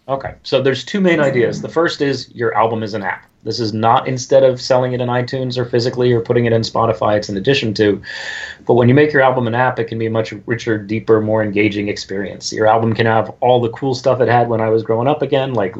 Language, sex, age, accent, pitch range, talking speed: English, male, 30-49, American, 110-125 Hz, 260 wpm